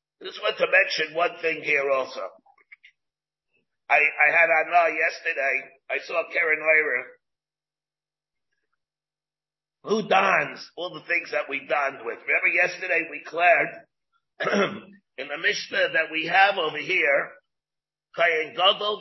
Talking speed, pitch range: 130 wpm, 155-205 Hz